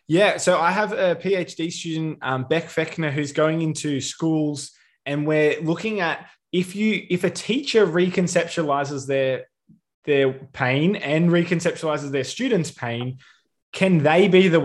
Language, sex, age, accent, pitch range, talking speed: English, male, 20-39, Australian, 135-165 Hz, 150 wpm